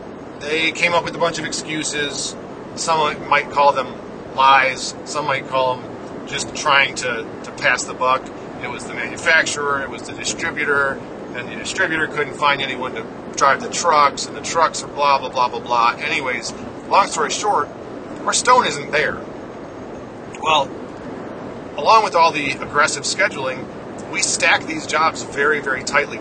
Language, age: English, 40-59